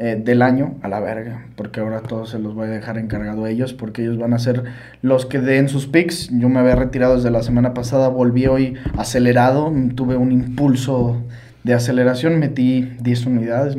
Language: English